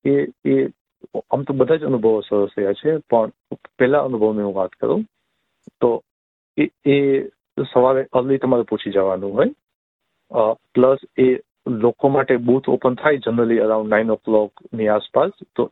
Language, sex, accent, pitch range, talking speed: Gujarati, male, native, 105-125 Hz, 55 wpm